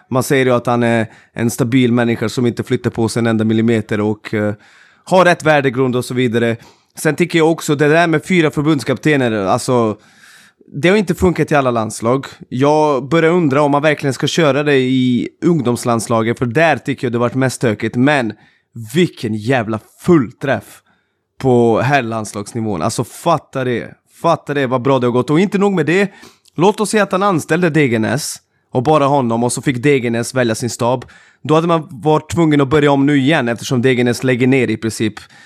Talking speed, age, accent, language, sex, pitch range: 200 wpm, 20-39, native, Swedish, male, 120-155 Hz